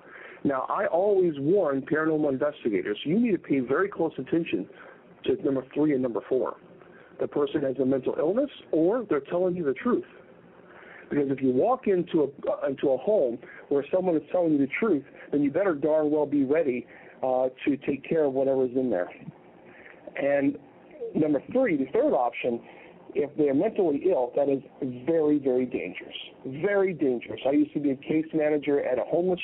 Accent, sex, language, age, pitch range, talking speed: American, male, English, 50-69, 135-185 Hz, 185 wpm